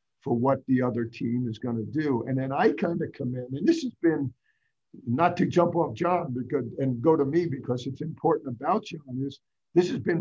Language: English